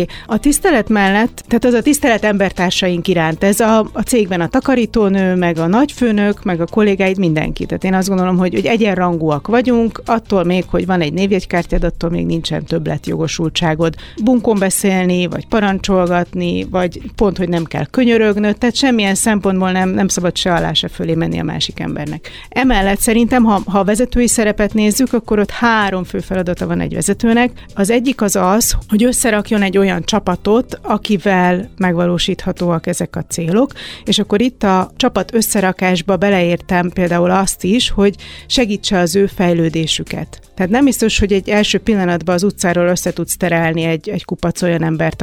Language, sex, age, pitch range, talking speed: Hungarian, female, 40-59, 175-215 Hz, 165 wpm